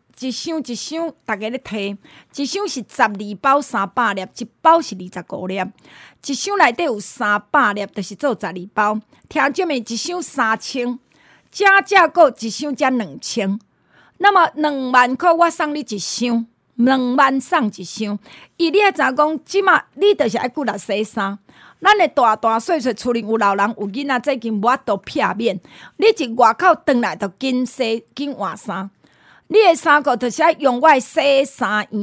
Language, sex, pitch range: Chinese, female, 220-305 Hz